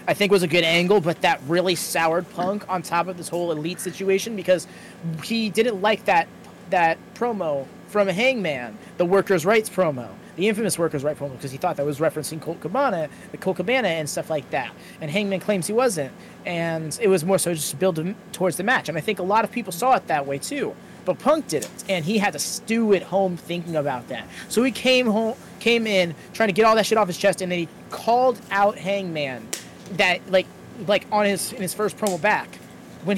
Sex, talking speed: male, 230 wpm